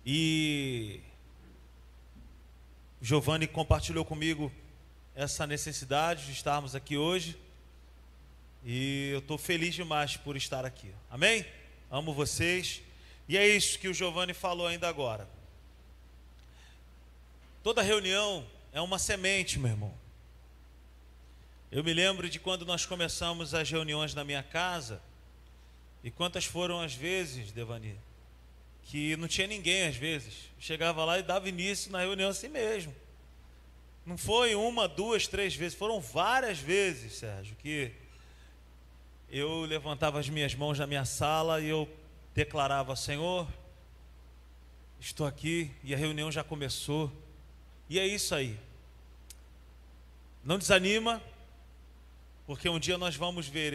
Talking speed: 125 wpm